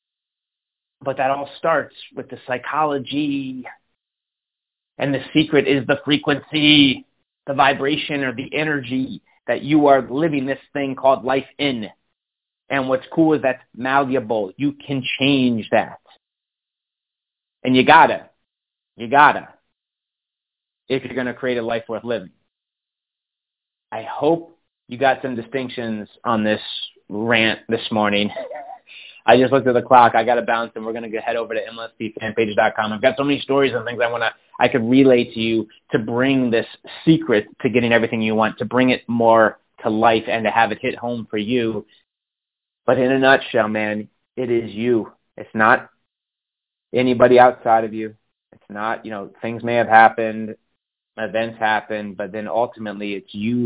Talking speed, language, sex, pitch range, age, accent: 170 wpm, English, male, 110-135 Hz, 30-49, American